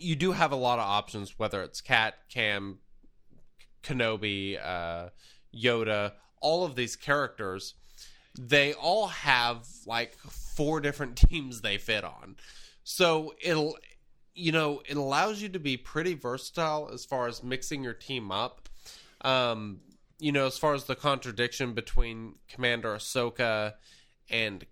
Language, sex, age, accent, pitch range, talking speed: English, male, 20-39, American, 115-150 Hz, 140 wpm